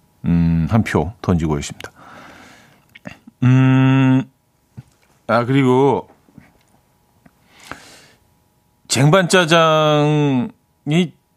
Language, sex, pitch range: Korean, male, 110-155 Hz